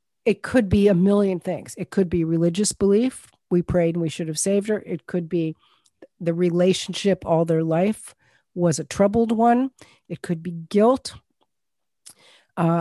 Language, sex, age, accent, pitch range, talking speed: English, female, 50-69, American, 165-205 Hz, 170 wpm